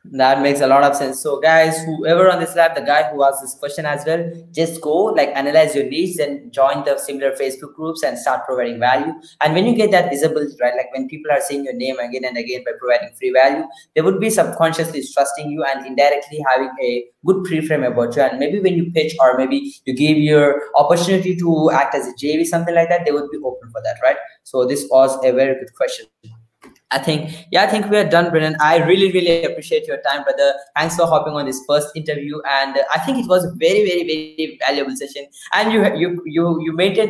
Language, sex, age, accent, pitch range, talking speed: English, male, 20-39, Indian, 135-175 Hz, 235 wpm